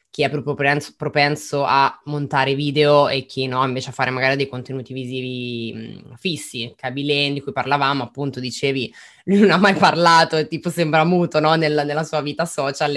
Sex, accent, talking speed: female, native, 180 wpm